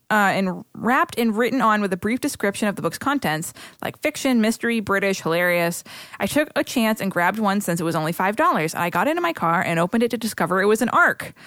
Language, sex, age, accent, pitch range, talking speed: English, female, 20-39, American, 180-240 Hz, 240 wpm